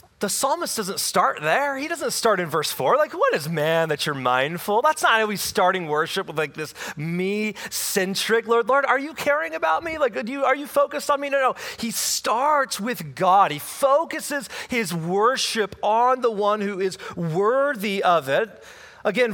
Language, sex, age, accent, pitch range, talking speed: English, male, 30-49, American, 175-240 Hz, 185 wpm